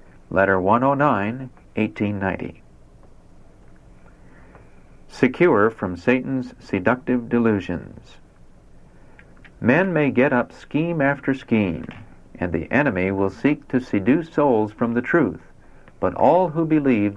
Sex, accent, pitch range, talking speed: male, American, 95-125 Hz, 105 wpm